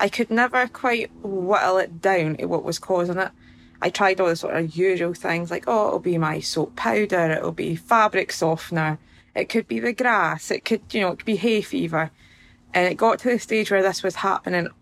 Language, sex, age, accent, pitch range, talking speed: English, female, 20-39, British, 160-200 Hz, 225 wpm